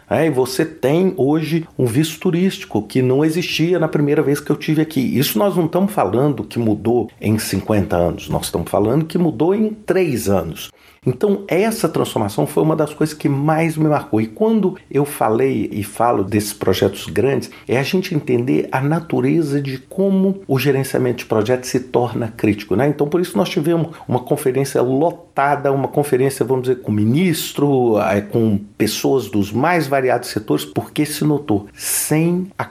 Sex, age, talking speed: male, 50-69, 175 wpm